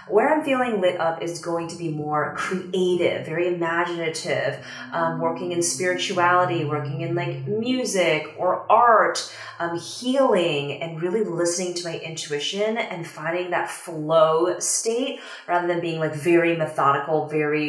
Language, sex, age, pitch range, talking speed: English, female, 30-49, 160-200 Hz, 145 wpm